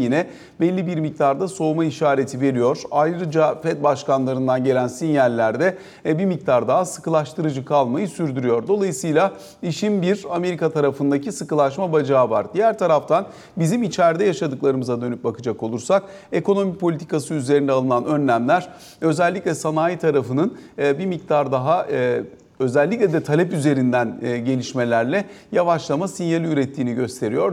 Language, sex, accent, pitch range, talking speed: Turkish, male, native, 130-175 Hz, 120 wpm